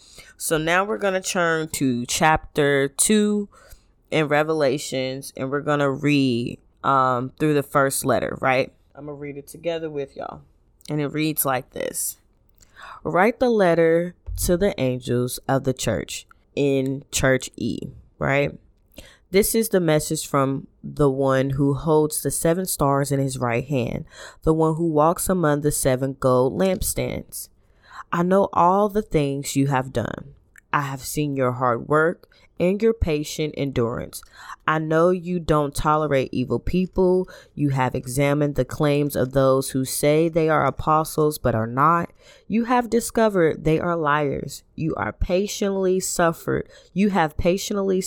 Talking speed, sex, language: 155 wpm, female, English